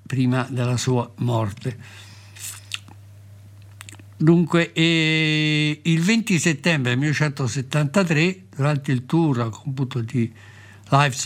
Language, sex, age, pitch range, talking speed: Italian, male, 60-79, 105-155 Hz, 95 wpm